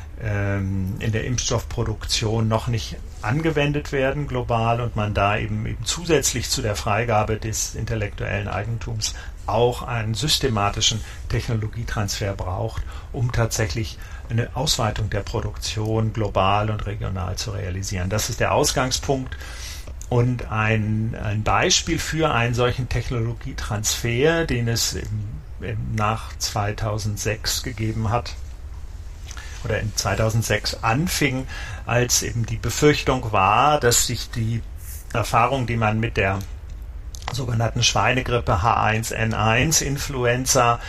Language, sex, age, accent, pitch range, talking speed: German, male, 50-69, German, 100-120 Hz, 110 wpm